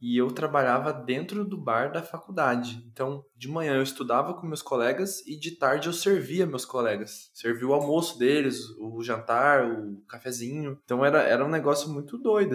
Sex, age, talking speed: male, 20-39, 180 wpm